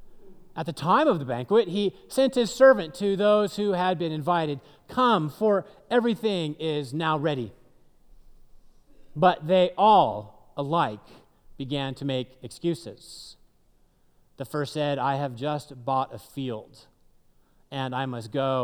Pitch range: 135-215 Hz